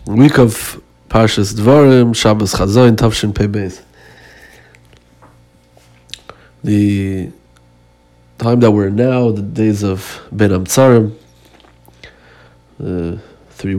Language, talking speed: Hebrew, 110 wpm